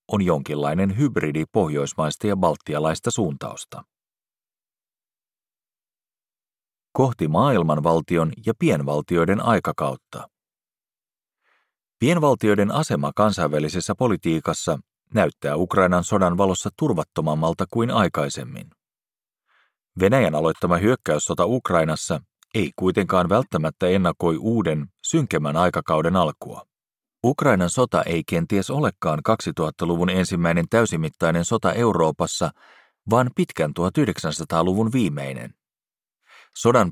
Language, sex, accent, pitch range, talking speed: Finnish, male, native, 80-100 Hz, 80 wpm